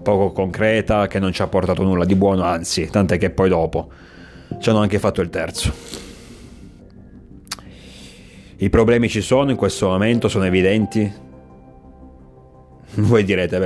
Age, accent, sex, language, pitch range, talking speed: 30-49, native, male, Italian, 85-110 Hz, 140 wpm